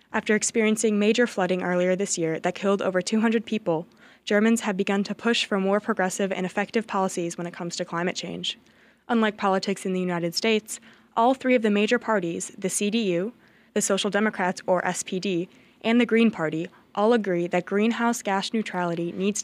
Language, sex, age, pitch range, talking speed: English, female, 20-39, 185-230 Hz, 180 wpm